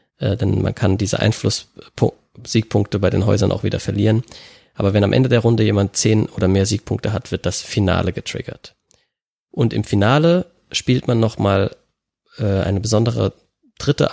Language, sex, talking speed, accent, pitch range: German, male, 155 wpm, German, 100-120 Hz